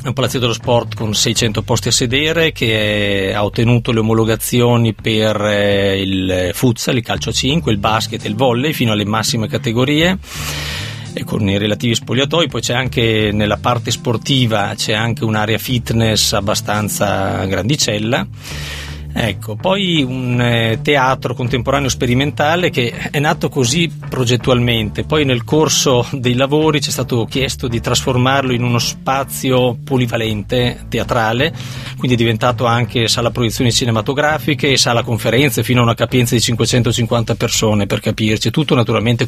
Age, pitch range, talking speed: 40-59, 110-130 Hz, 150 wpm